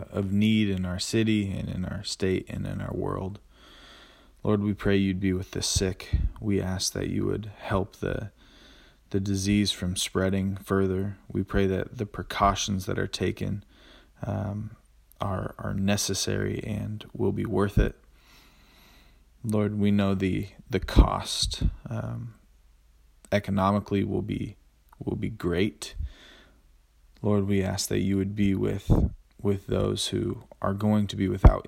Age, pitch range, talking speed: 20-39, 95-105 Hz, 150 wpm